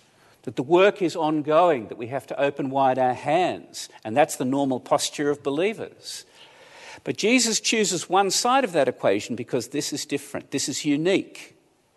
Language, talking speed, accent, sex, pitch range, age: English, 175 wpm, Australian, male, 130-205 Hz, 50-69